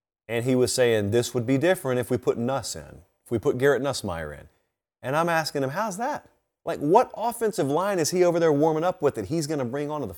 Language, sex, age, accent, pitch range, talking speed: English, male, 30-49, American, 115-180 Hz, 255 wpm